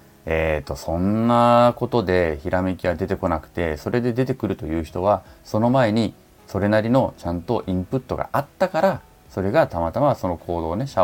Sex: male